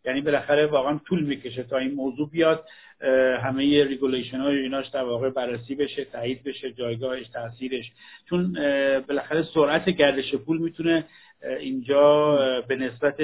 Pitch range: 130-165 Hz